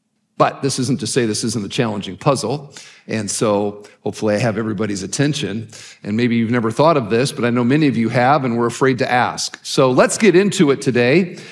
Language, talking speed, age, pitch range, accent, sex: English, 220 wpm, 50-69, 135-195 Hz, American, male